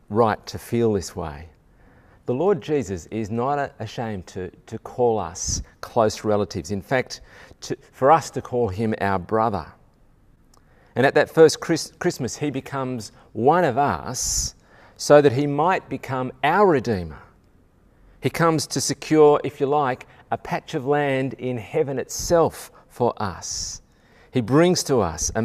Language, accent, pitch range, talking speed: English, Australian, 100-140 Hz, 150 wpm